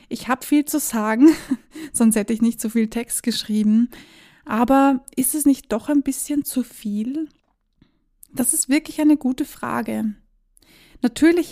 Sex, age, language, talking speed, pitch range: female, 20-39, German, 150 wpm, 225-270 Hz